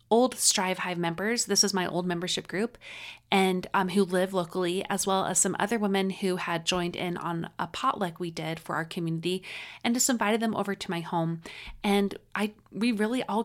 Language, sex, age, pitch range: English, female, 30-49, 175-200 Hz